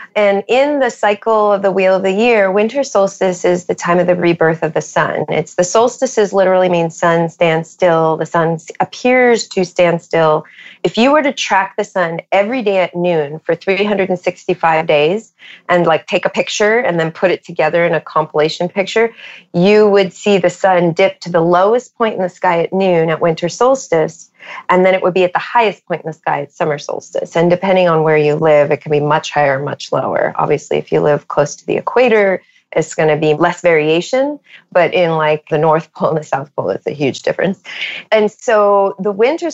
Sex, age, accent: female, 30-49, American